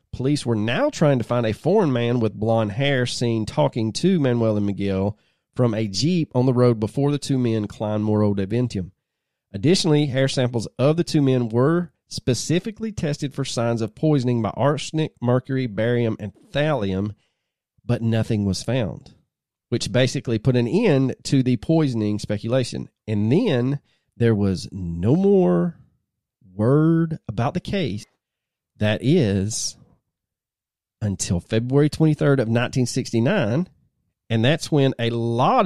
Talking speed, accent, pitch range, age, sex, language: 145 wpm, American, 115-155 Hz, 30-49, male, English